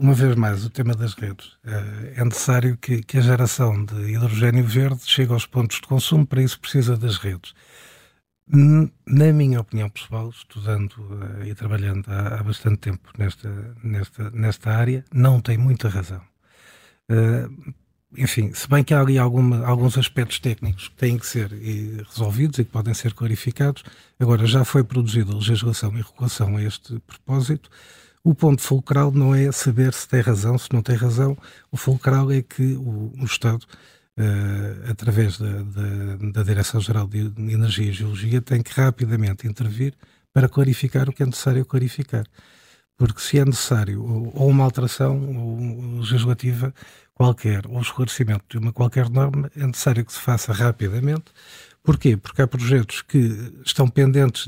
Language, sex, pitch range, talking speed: Portuguese, male, 110-130 Hz, 155 wpm